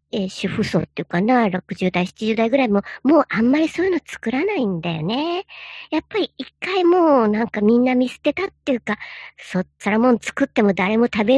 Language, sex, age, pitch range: Japanese, male, 50-69, 185-260 Hz